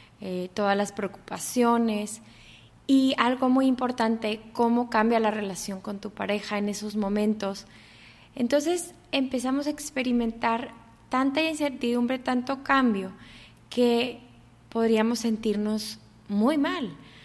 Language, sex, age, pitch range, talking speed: English, female, 20-39, 205-255 Hz, 110 wpm